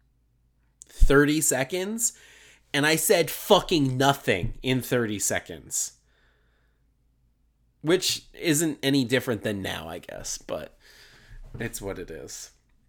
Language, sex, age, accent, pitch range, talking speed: English, male, 30-49, American, 110-135 Hz, 105 wpm